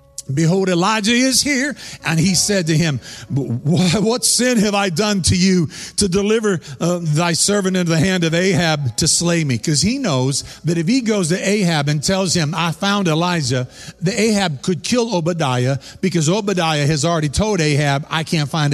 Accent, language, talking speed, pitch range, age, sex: American, English, 185 wpm, 140-190 Hz, 50-69, male